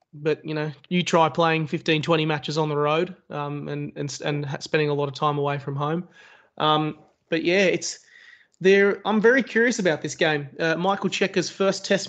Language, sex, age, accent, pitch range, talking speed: English, male, 20-39, Australian, 145-175 Hz, 200 wpm